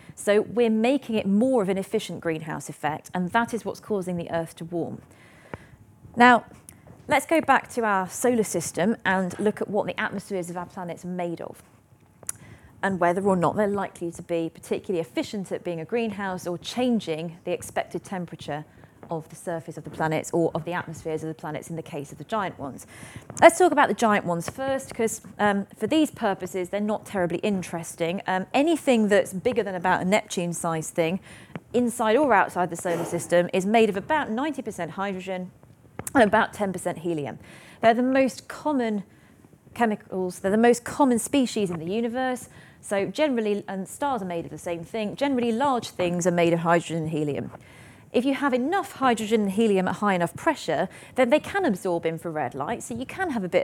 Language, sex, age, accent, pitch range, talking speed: English, female, 30-49, British, 170-230 Hz, 195 wpm